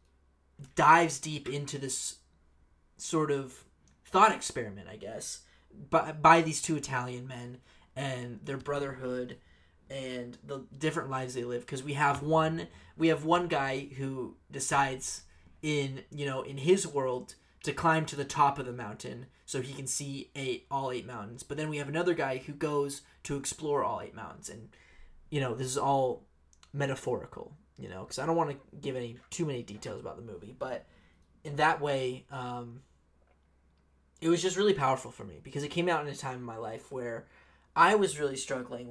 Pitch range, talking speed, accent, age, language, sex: 120-150 Hz, 185 wpm, American, 20-39, English, male